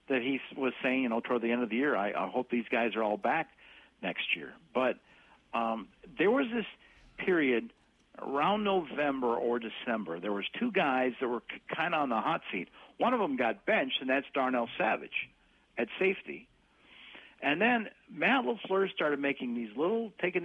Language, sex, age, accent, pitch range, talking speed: English, male, 60-79, American, 115-160 Hz, 190 wpm